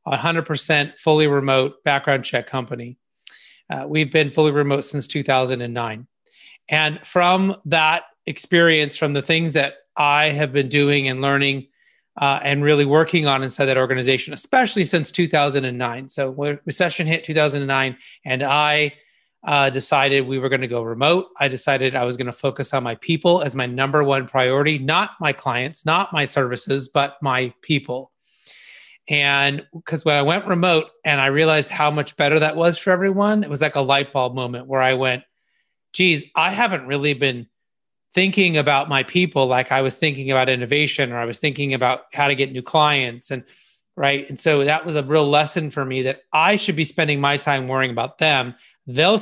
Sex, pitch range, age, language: male, 130-155 Hz, 30-49, English